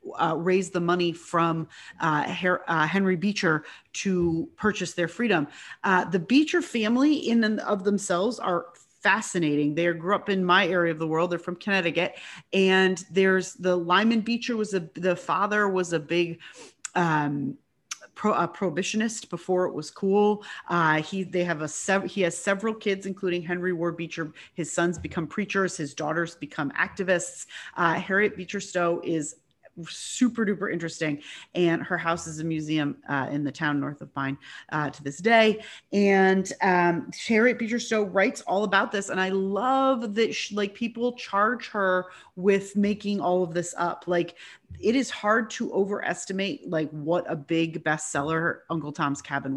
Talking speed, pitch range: 165 wpm, 165-205 Hz